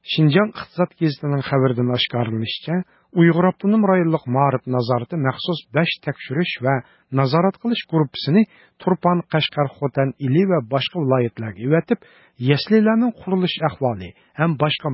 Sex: male